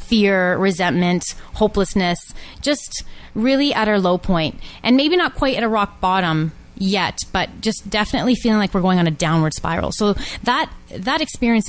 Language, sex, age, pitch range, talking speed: English, female, 20-39, 175-215 Hz, 170 wpm